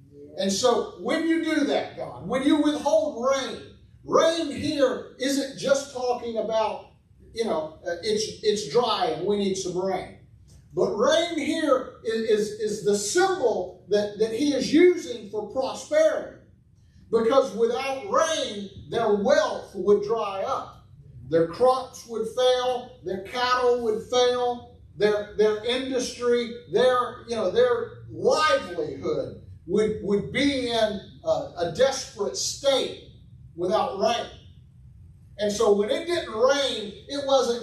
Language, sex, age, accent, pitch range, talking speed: English, male, 50-69, American, 200-270 Hz, 135 wpm